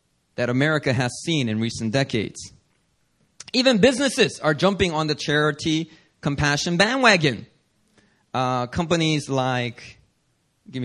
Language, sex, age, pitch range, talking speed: English, male, 30-49, 125-180 Hz, 110 wpm